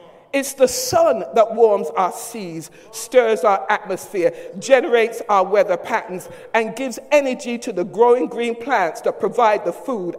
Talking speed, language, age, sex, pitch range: 155 wpm, English, 60-79, male, 200-295 Hz